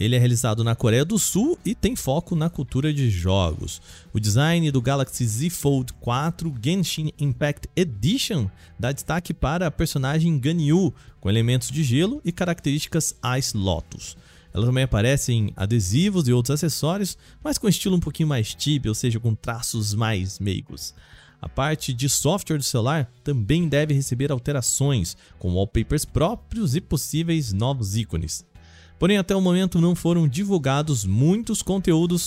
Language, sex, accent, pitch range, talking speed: Portuguese, male, Brazilian, 115-165 Hz, 160 wpm